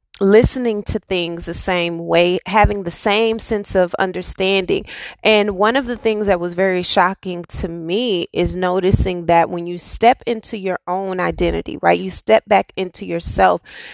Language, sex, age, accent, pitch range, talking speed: English, female, 20-39, American, 175-220 Hz, 170 wpm